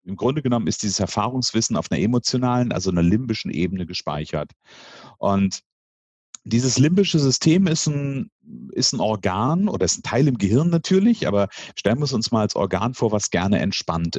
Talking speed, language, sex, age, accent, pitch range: 170 wpm, German, male, 40-59, German, 95-130 Hz